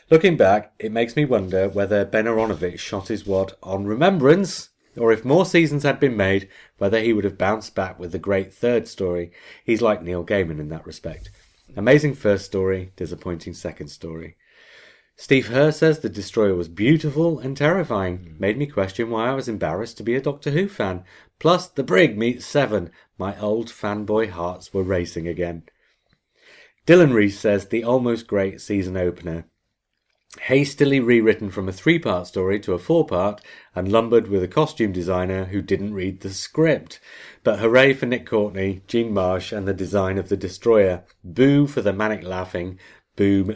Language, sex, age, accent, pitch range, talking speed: English, male, 30-49, British, 95-125 Hz, 175 wpm